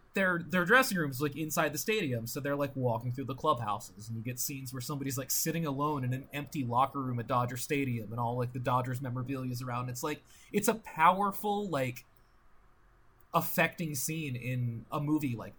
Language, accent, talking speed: English, American, 200 wpm